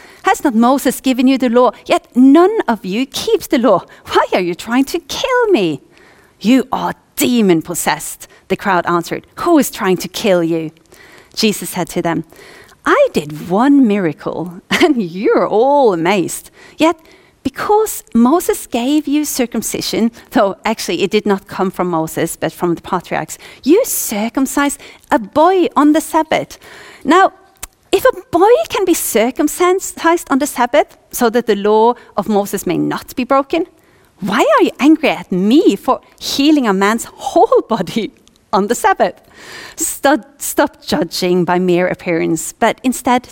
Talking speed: 155 wpm